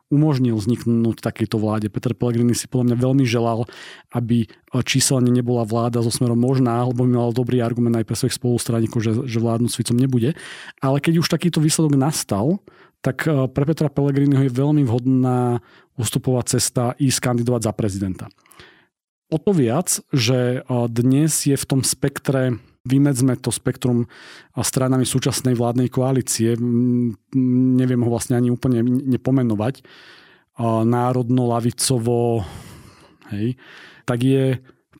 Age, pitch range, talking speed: 40-59, 120-140 Hz, 135 wpm